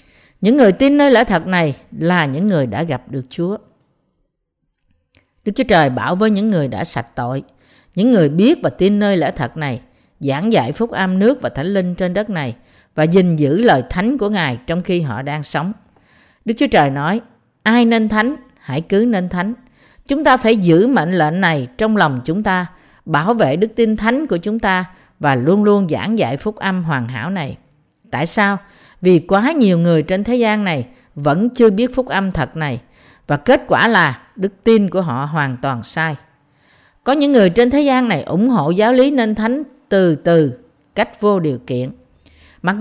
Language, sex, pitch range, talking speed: Vietnamese, female, 150-225 Hz, 200 wpm